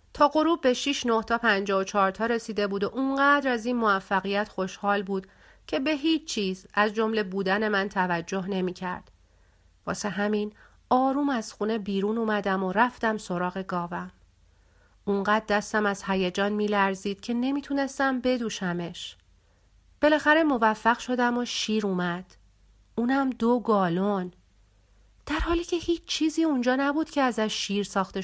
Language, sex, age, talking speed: Persian, female, 40-59, 145 wpm